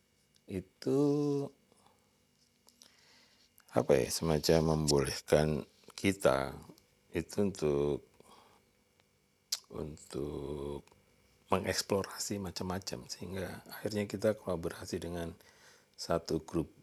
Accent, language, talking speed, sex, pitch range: native, Indonesian, 70 wpm, male, 75-100 Hz